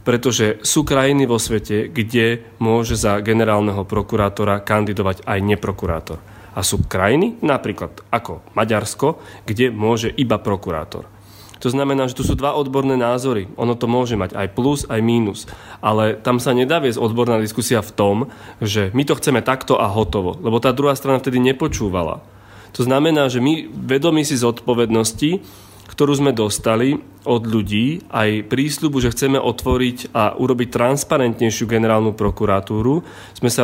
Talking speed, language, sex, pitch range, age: 150 wpm, Slovak, male, 105-125 Hz, 30-49